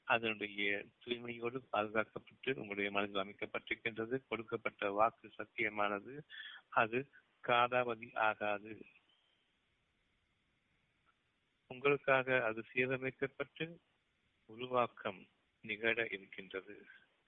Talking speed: 65 wpm